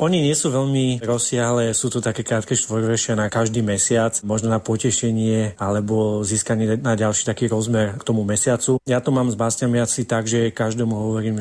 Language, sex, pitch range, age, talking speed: Slovak, male, 110-120 Hz, 30-49, 190 wpm